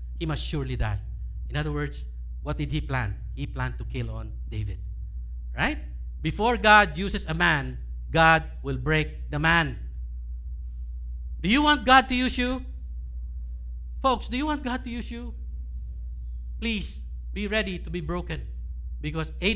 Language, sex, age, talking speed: English, male, 50-69, 155 wpm